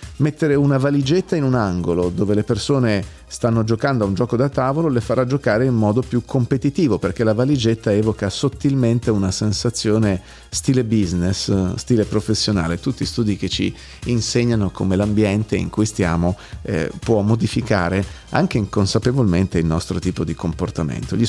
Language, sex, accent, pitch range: Italian, male, native, 95-125 Hz